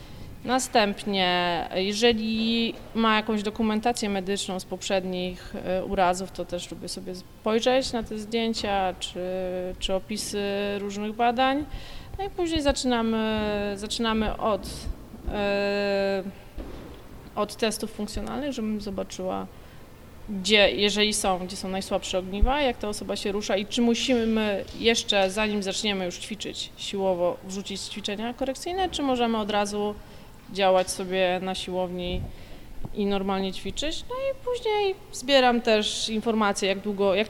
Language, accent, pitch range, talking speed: Polish, native, 195-230 Hz, 125 wpm